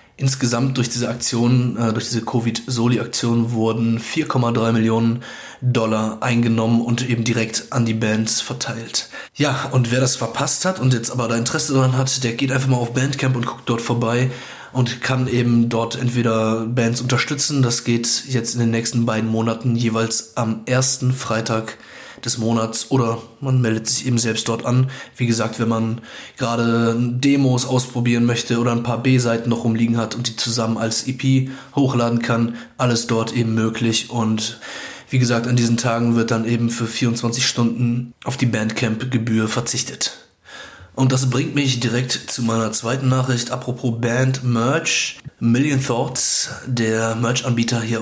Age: 20-39